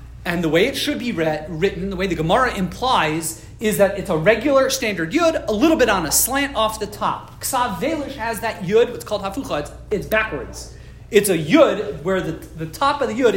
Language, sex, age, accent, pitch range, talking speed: English, male, 40-59, American, 175-235 Hz, 225 wpm